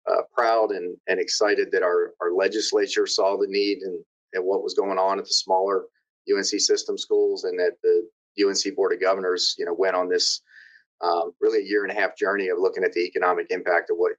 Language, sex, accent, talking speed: English, male, American, 220 wpm